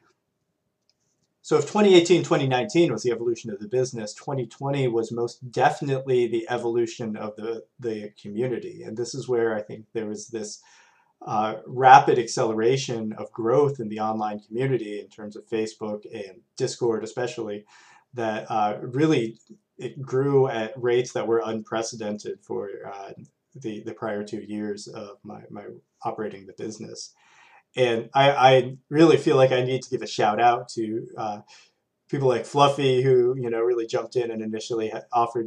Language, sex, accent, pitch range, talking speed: English, male, American, 110-130 Hz, 160 wpm